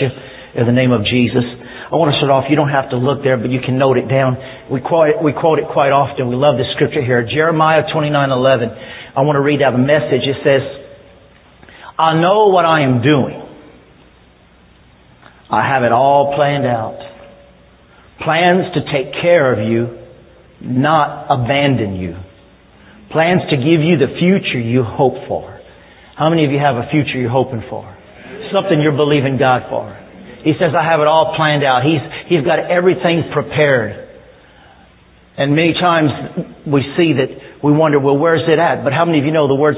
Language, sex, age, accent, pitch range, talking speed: English, male, 50-69, American, 130-155 Hz, 185 wpm